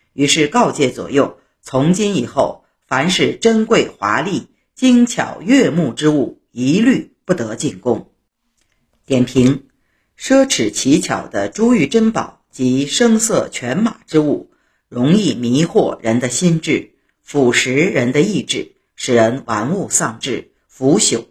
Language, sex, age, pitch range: Chinese, female, 50-69, 130-215 Hz